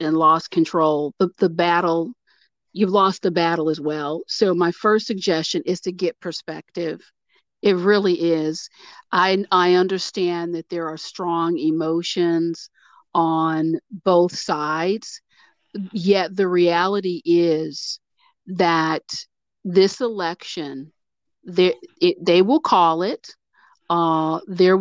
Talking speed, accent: 120 wpm, American